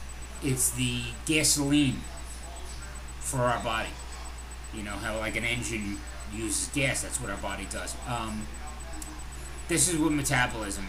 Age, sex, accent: 30-49, male, American